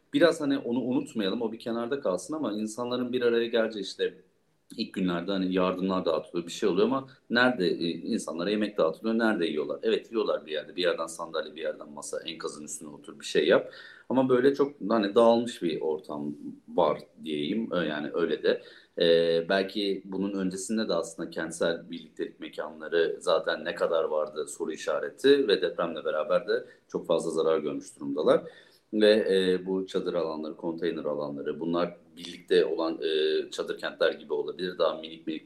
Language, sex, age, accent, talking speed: Turkish, male, 40-59, native, 170 wpm